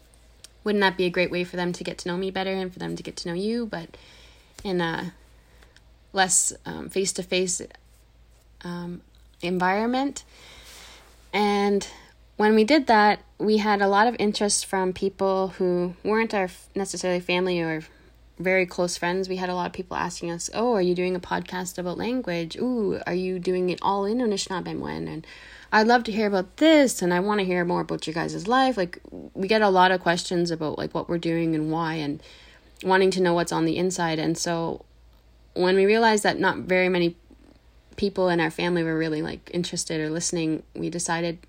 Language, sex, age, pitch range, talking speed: English, female, 20-39, 165-195 Hz, 195 wpm